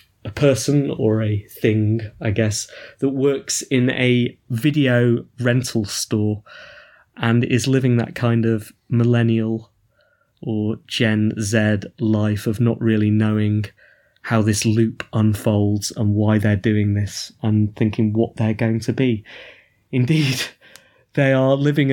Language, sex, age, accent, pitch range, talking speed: English, male, 20-39, British, 110-135 Hz, 135 wpm